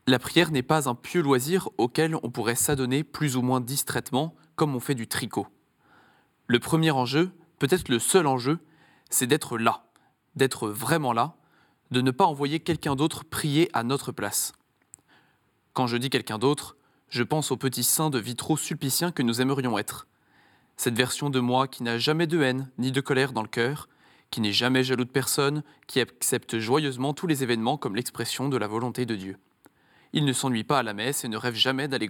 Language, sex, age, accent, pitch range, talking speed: French, male, 20-39, French, 120-145 Hz, 200 wpm